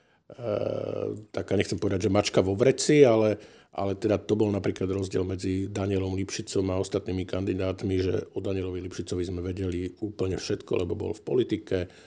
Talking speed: 165 wpm